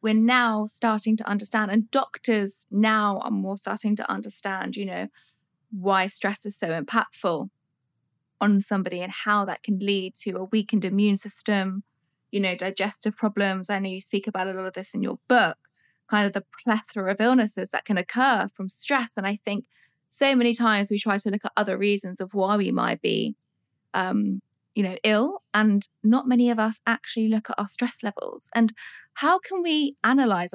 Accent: British